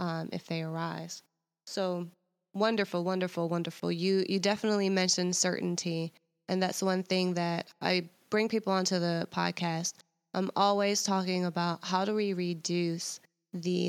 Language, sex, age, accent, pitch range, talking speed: English, female, 20-39, American, 175-200 Hz, 145 wpm